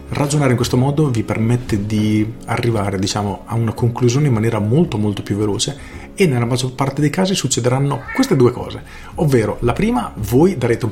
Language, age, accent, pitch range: Italian, 40-59, native, 105-130 Hz